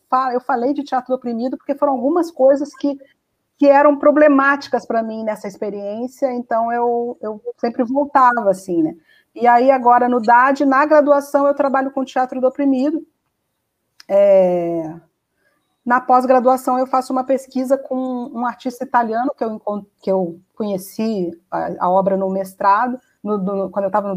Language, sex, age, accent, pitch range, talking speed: Portuguese, female, 40-59, Brazilian, 225-275 Hz, 160 wpm